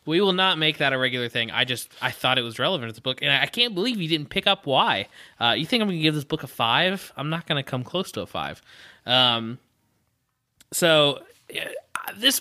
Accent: American